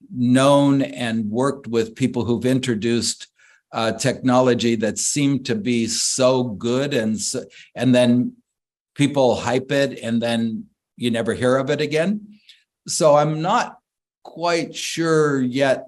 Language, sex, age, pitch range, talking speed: English, male, 50-69, 115-140 Hz, 135 wpm